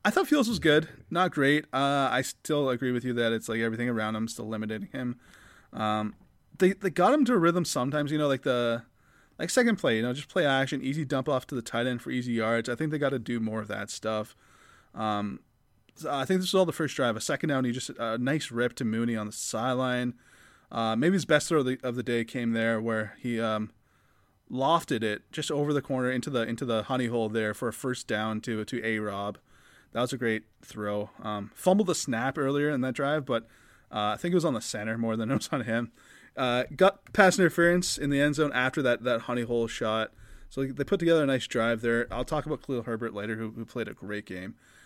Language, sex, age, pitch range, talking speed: English, male, 20-39, 115-150 Hz, 245 wpm